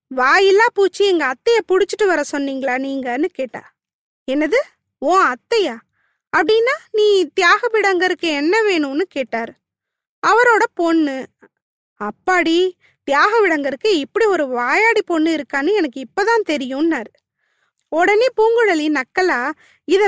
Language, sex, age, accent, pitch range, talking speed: Tamil, female, 20-39, native, 295-395 Hz, 100 wpm